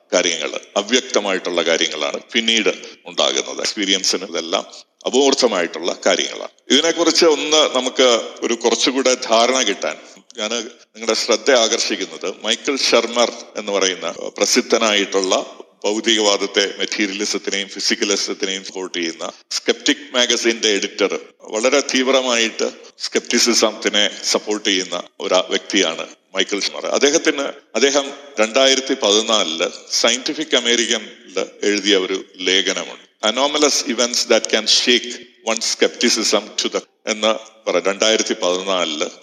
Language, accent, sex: Malayalam, native, male